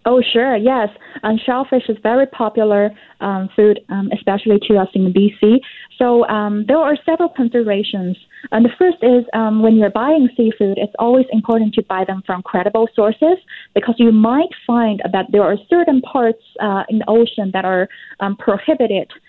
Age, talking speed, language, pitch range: 20-39, 175 wpm, English, 200-235 Hz